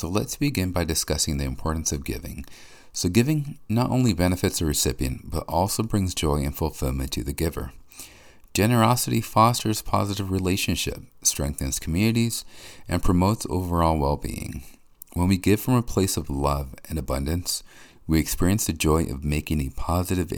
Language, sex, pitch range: English, male, 75-100 Hz